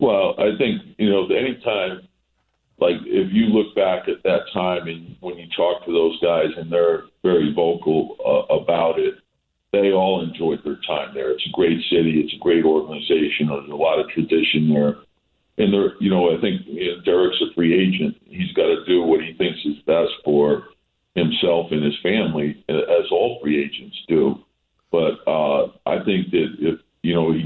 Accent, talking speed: American, 185 wpm